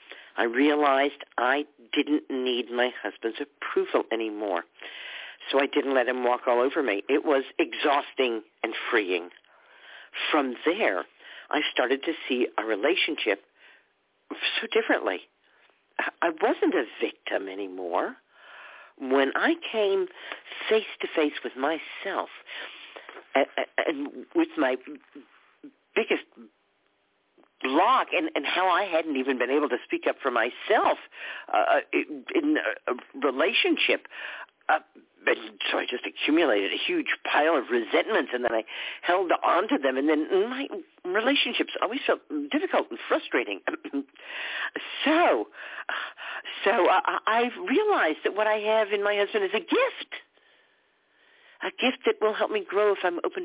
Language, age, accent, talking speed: English, 50-69, American, 135 wpm